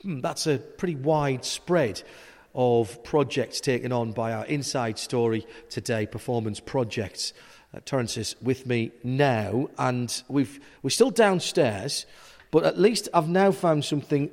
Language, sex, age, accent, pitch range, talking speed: English, male, 40-59, British, 115-155 Hz, 140 wpm